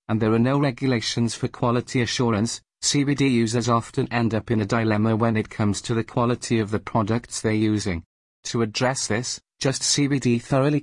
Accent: British